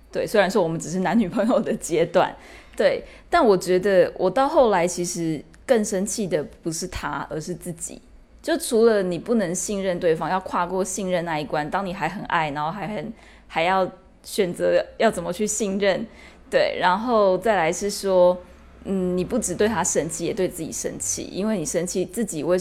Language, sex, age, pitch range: Chinese, female, 20-39, 175-225 Hz